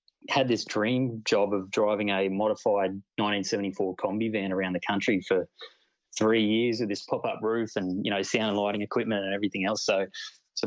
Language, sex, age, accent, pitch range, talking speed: English, male, 20-39, Australian, 95-115 Hz, 185 wpm